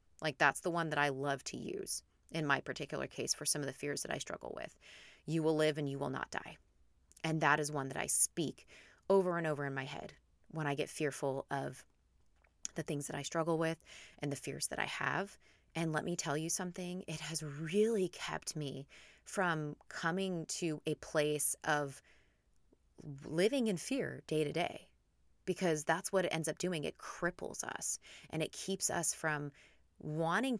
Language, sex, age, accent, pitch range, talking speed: English, female, 30-49, American, 145-180 Hz, 195 wpm